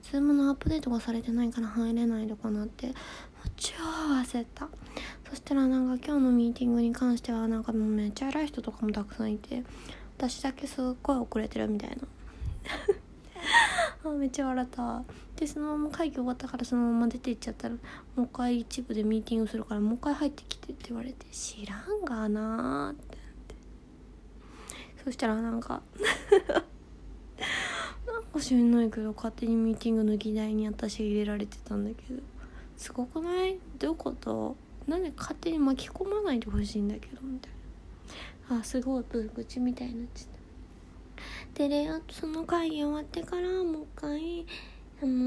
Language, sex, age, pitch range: Japanese, female, 20-39, 220-285 Hz